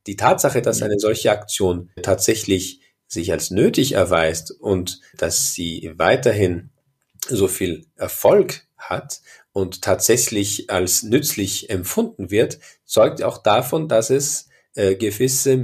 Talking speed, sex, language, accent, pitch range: 125 wpm, male, German, German, 95-140 Hz